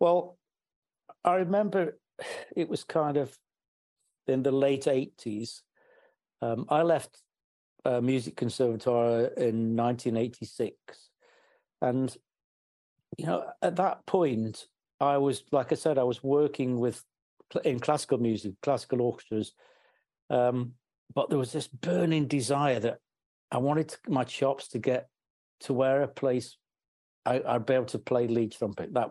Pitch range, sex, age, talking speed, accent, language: 120-155 Hz, male, 60-79, 140 wpm, British, English